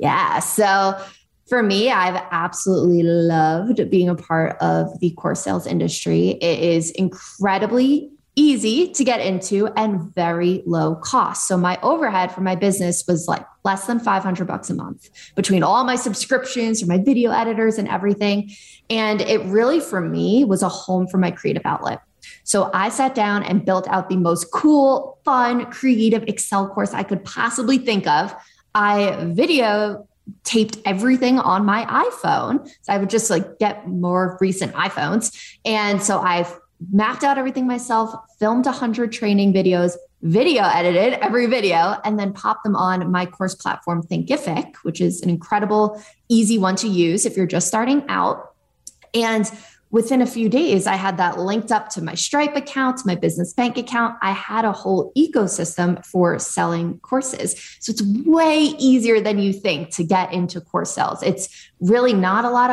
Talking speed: 170 wpm